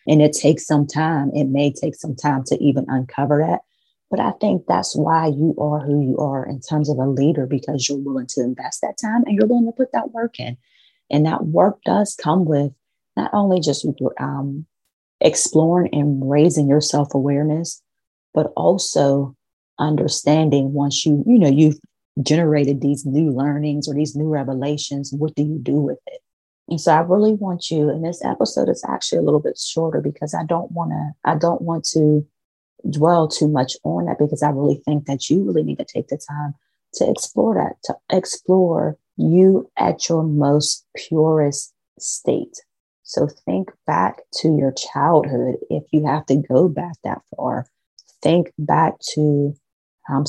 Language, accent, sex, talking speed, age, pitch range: English, American, female, 185 wpm, 30-49, 140-165 Hz